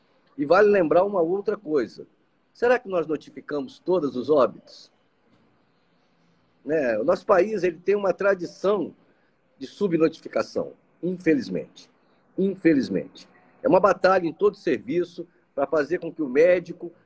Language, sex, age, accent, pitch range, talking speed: Portuguese, male, 50-69, Brazilian, 165-240 Hz, 125 wpm